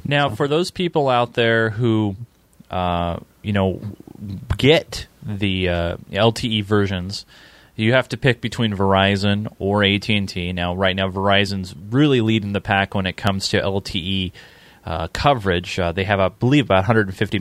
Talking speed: 155 wpm